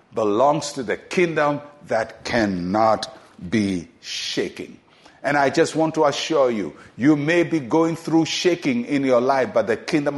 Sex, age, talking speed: male, 50-69, 160 wpm